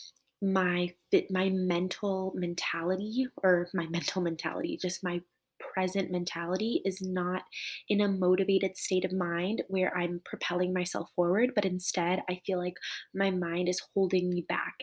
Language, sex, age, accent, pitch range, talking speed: English, female, 20-39, American, 175-190 Hz, 145 wpm